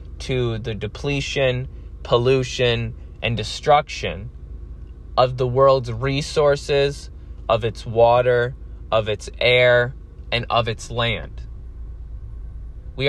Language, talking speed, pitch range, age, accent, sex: English, 95 wpm, 100-125 Hz, 20-39, American, male